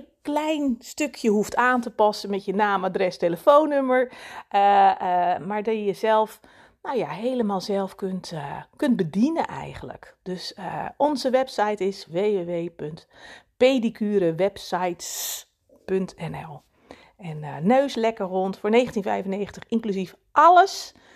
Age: 40-59